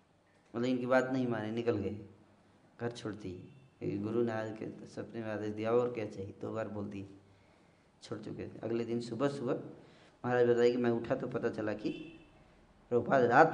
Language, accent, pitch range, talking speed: Hindi, native, 110-150 Hz, 175 wpm